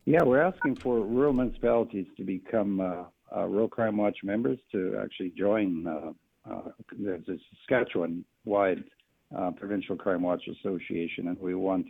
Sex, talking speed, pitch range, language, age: male, 145 wpm, 90-115 Hz, English, 60-79